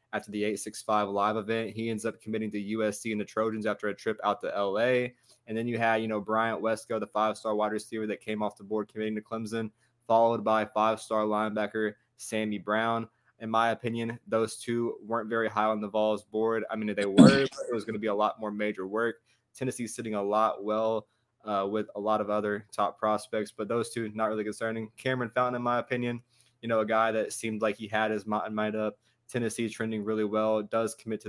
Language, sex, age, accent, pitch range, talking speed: English, male, 20-39, American, 105-115 Hz, 230 wpm